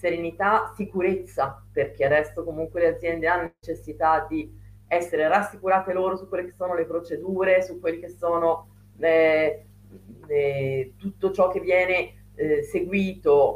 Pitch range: 140-190 Hz